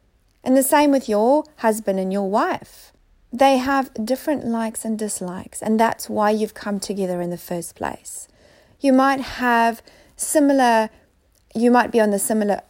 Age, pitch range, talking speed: 40-59, 200-260 Hz, 165 wpm